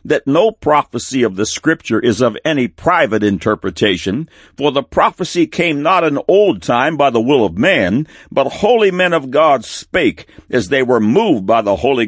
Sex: male